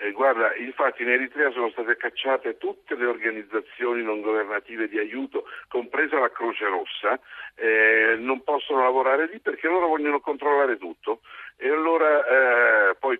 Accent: native